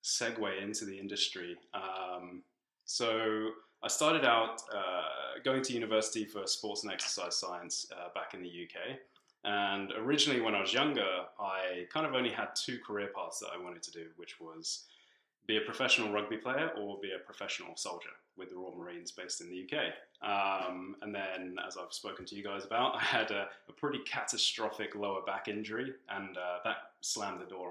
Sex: male